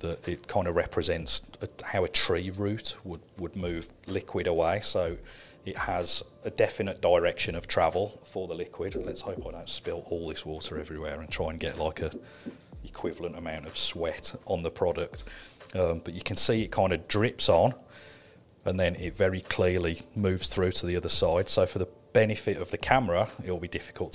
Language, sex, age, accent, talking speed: English, male, 40-59, British, 195 wpm